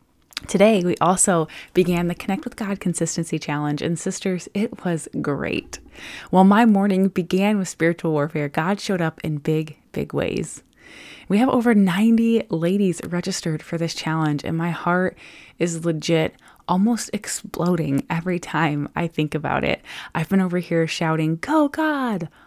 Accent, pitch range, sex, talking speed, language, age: American, 160-195 Hz, female, 155 wpm, English, 20-39